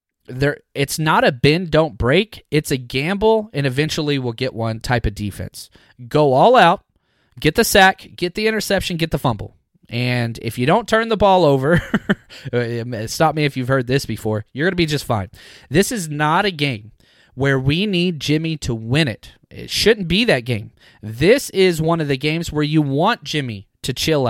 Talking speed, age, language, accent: 200 wpm, 30-49, English, American